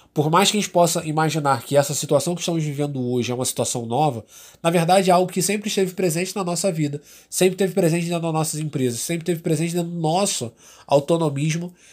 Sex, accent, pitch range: male, Brazilian, 135-175 Hz